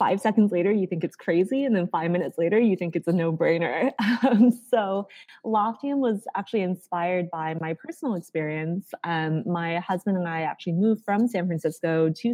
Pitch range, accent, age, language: 165-220 Hz, American, 20-39, English